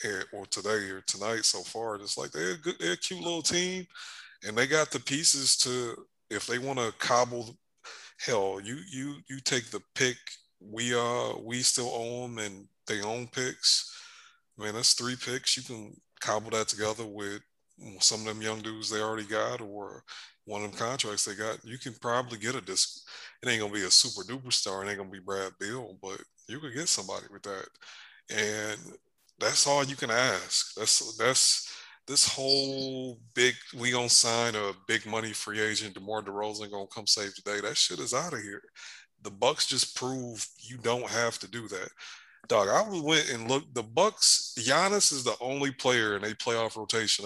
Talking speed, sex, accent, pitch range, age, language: 195 wpm, male, American, 110-130 Hz, 20-39, English